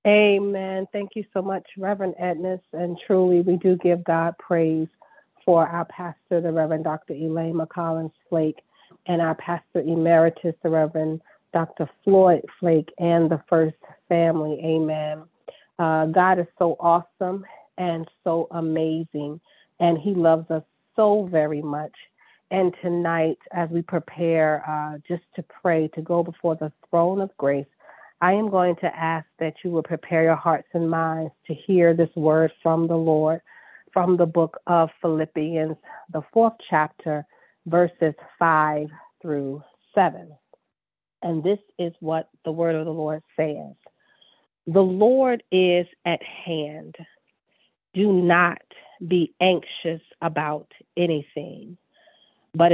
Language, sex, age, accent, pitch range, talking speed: English, female, 40-59, American, 160-180 Hz, 140 wpm